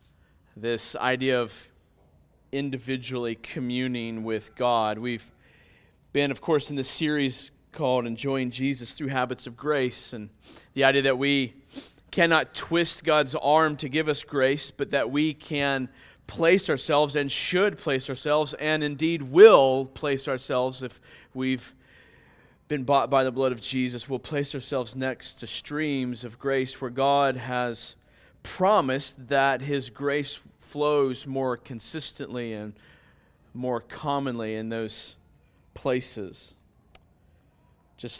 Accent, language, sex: American, English, male